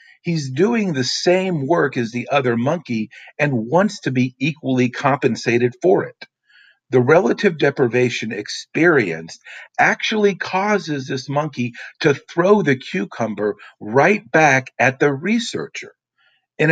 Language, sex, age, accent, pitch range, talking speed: English, male, 50-69, American, 120-175 Hz, 125 wpm